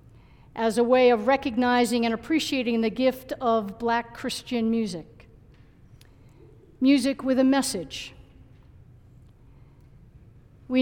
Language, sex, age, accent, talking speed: English, female, 50-69, American, 100 wpm